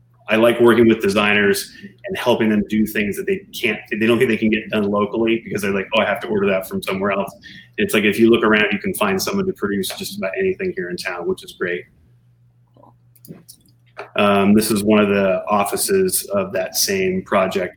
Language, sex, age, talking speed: English, male, 30-49, 220 wpm